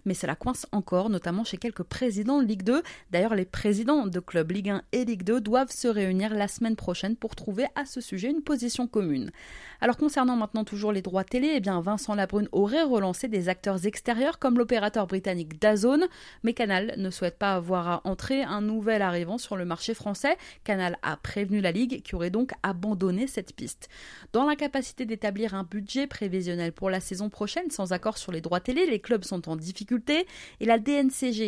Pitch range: 195-250 Hz